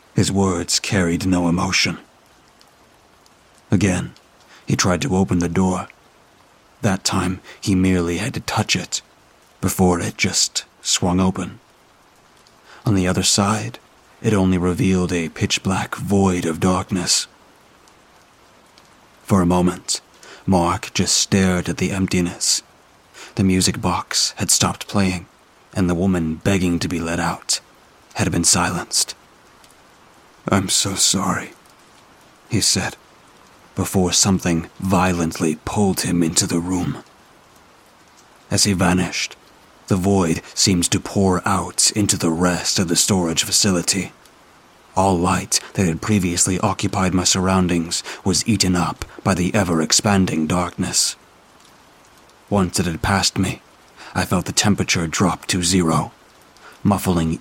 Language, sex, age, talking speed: English, male, 30-49, 125 wpm